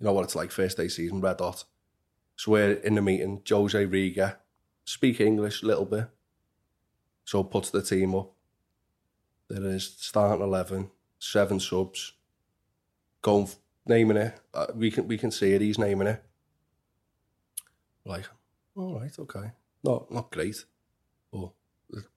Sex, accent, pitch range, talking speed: male, British, 95-110 Hz, 145 wpm